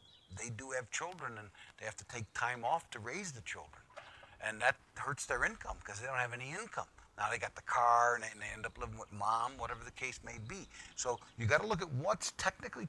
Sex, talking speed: male, 235 wpm